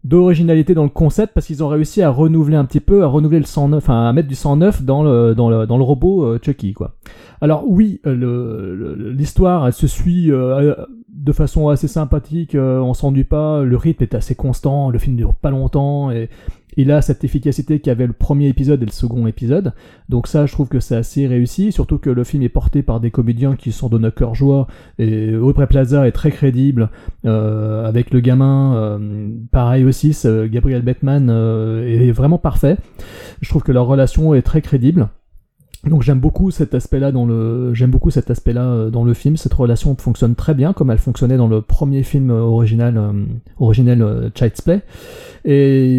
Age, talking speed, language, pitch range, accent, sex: 30-49, 200 wpm, French, 120-150 Hz, French, male